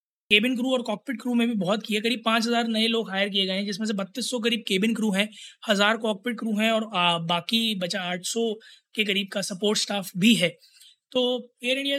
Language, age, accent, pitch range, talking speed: Hindi, 20-39, native, 185-215 Hz, 225 wpm